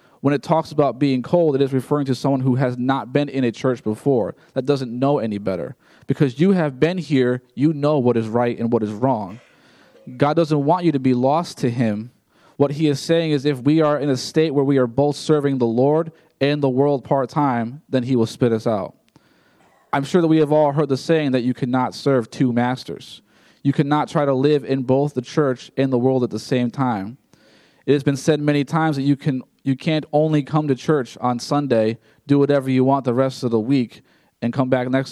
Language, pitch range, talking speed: English, 125-150 Hz, 230 wpm